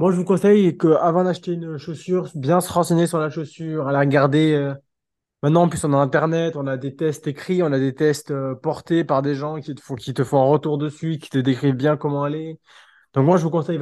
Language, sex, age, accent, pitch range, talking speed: French, male, 20-39, French, 135-160 Hz, 245 wpm